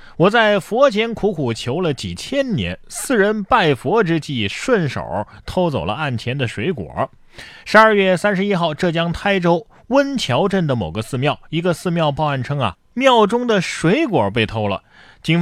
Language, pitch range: Chinese, 115-185 Hz